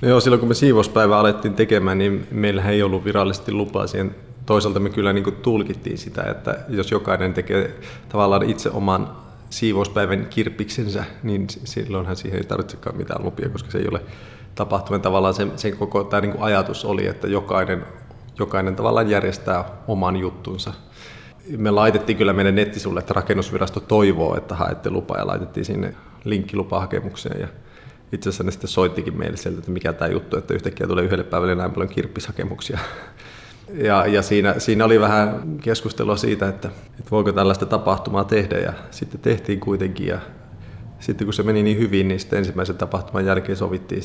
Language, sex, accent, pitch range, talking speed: Finnish, male, native, 95-110 Hz, 165 wpm